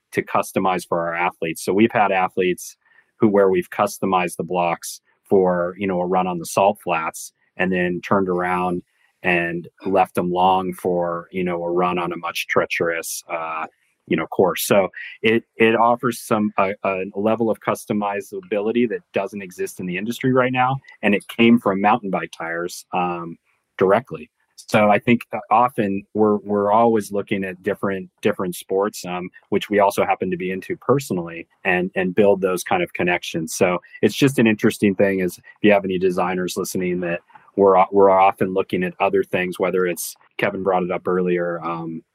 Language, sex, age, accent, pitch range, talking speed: English, male, 30-49, American, 90-115 Hz, 185 wpm